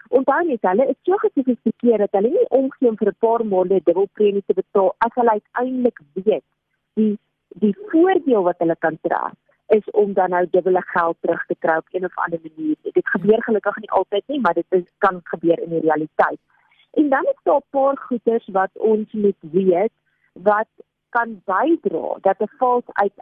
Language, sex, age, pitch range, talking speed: German, female, 40-59, 190-250 Hz, 190 wpm